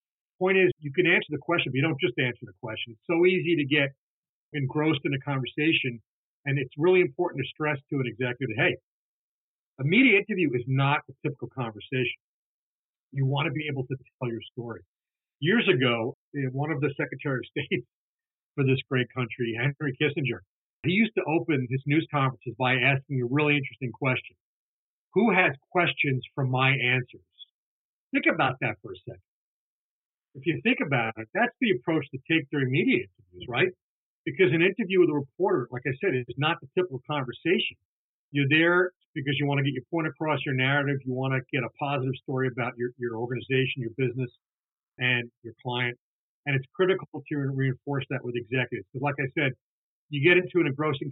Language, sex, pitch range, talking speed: English, male, 125-155 Hz, 190 wpm